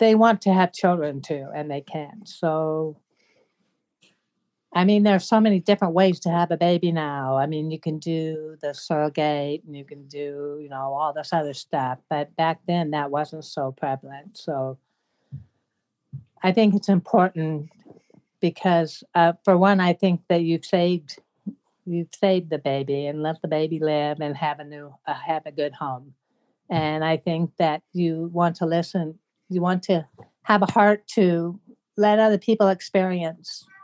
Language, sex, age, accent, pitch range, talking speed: English, female, 60-79, American, 145-185 Hz, 175 wpm